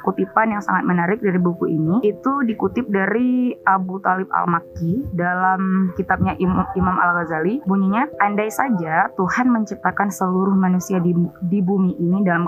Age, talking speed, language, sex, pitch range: 20-39, 145 wpm, Indonesian, female, 170-200 Hz